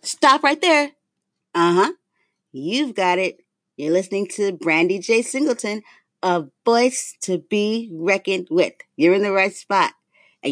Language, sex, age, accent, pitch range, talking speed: English, female, 30-49, American, 155-195 Hz, 145 wpm